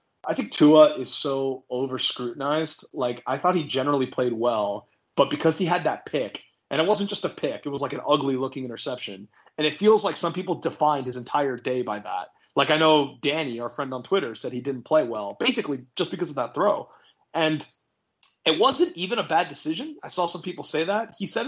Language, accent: English, American